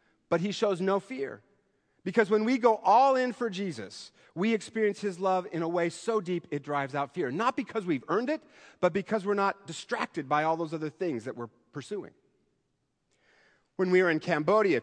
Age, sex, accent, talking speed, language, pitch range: 40-59, male, American, 200 wpm, English, 155-205 Hz